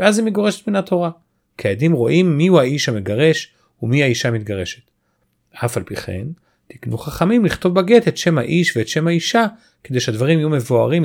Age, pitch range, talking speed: 40-59, 115-170 Hz, 180 wpm